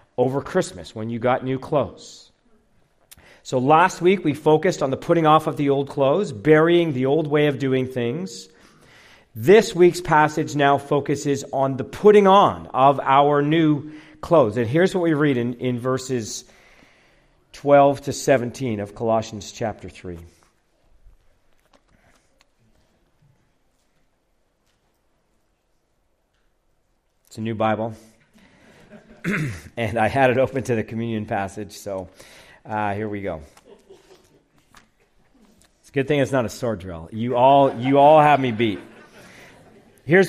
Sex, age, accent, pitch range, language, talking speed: male, 50-69, American, 115-155 Hz, English, 135 wpm